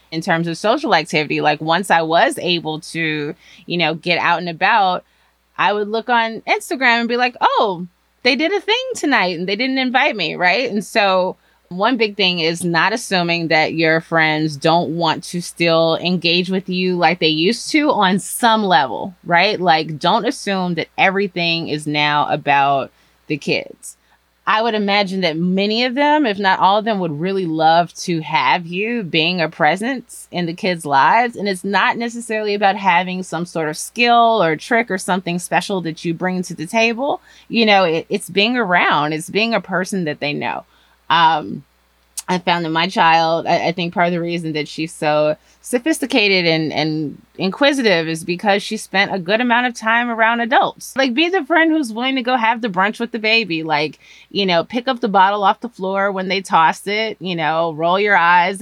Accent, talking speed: American, 200 wpm